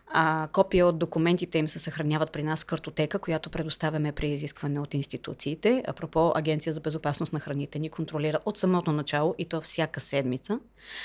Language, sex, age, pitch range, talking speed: Bulgarian, female, 30-49, 155-185 Hz, 175 wpm